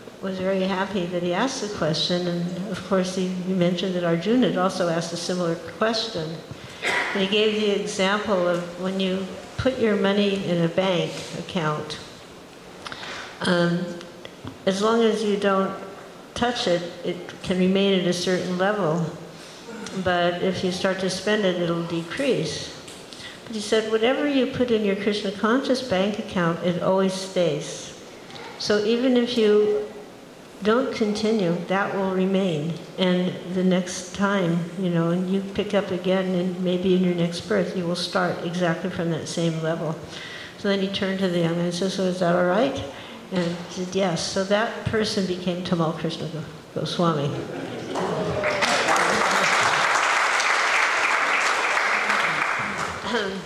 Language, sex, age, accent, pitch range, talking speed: English, female, 60-79, American, 175-200 Hz, 150 wpm